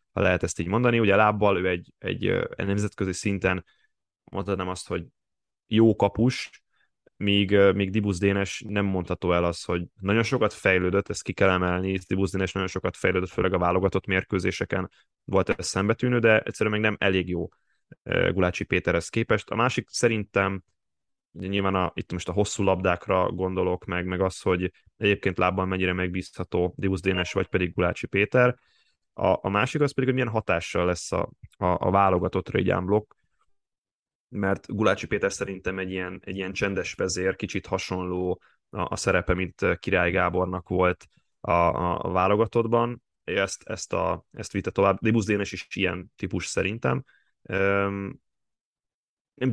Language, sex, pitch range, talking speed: Hungarian, male, 90-100 Hz, 155 wpm